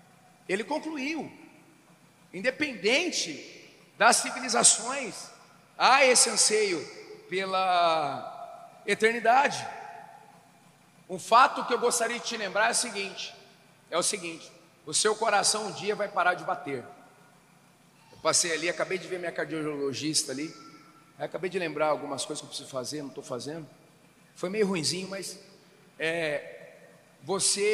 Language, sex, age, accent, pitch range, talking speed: Portuguese, male, 40-59, Brazilian, 165-220 Hz, 130 wpm